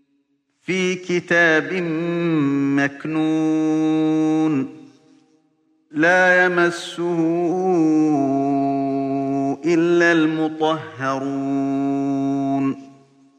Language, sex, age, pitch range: Arabic, male, 50-69, 140-170 Hz